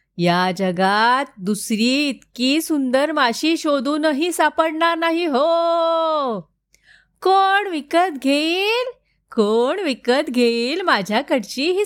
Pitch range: 210-345 Hz